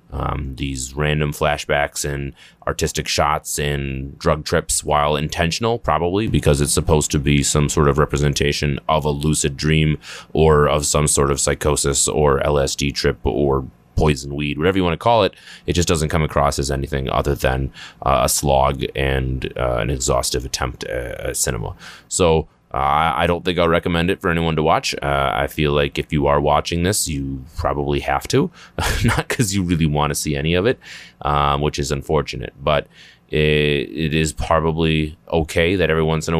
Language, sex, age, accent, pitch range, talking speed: English, male, 30-49, American, 70-80 Hz, 185 wpm